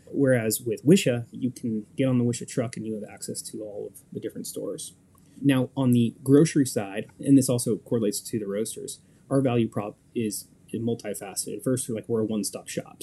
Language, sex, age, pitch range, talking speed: English, male, 20-39, 110-130 Hz, 195 wpm